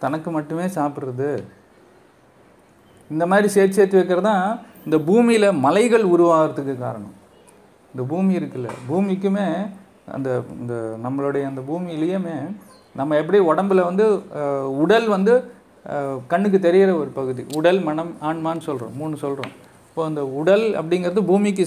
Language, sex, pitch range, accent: Tamil, male, 140-185 Hz, native